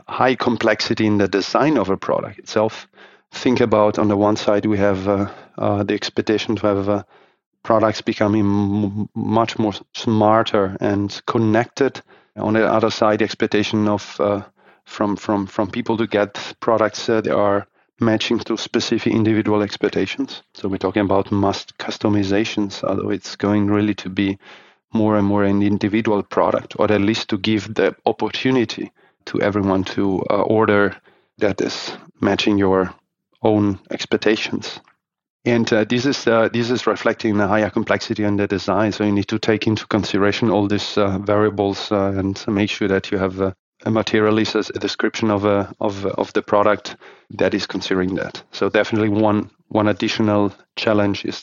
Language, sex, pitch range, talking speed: English, male, 100-110 Hz, 170 wpm